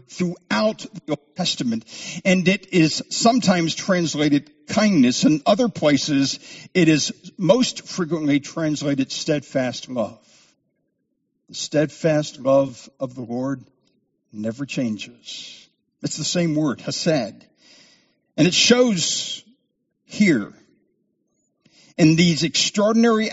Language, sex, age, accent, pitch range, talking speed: English, male, 60-79, American, 140-200 Hz, 105 wpm